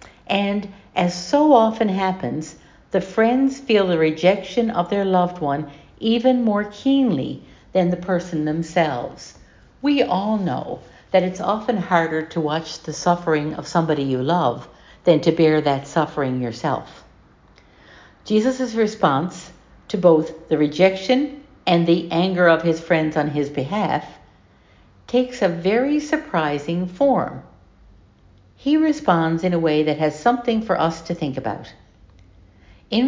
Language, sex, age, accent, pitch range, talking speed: English, female, 60-79, American, 150-205 Hz, 140 wpm